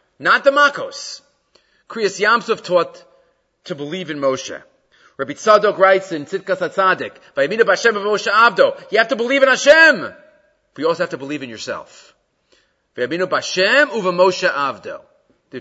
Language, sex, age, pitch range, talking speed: English, male, 40-59, 165-225 Hz, 150 wpm